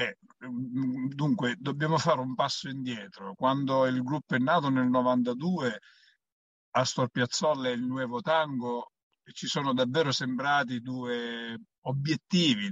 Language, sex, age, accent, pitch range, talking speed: Italian, male, 50-69, native, 125-160 Hz, 120 wpm